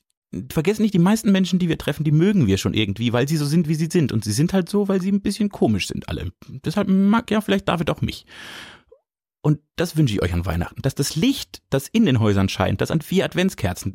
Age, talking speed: 30-49, 250 wpm